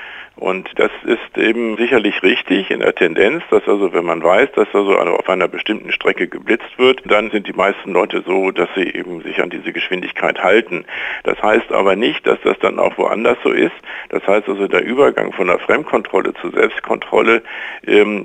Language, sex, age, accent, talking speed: German, male, 60-79, German, 190 wpm